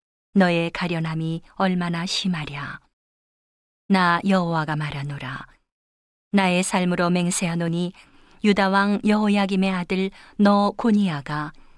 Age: 40-59